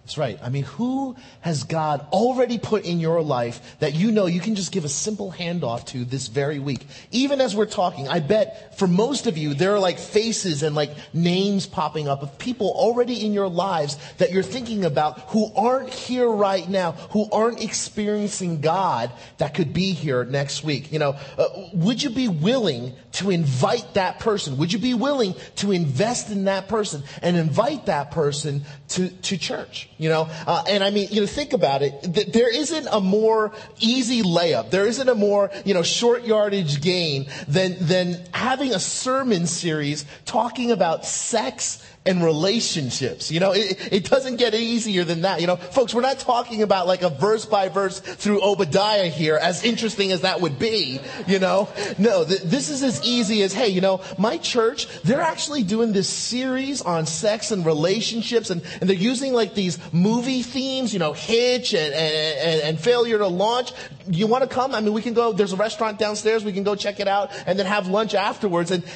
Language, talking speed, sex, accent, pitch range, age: English, 200 wpm, male, American, 165-225 Hz, 30-49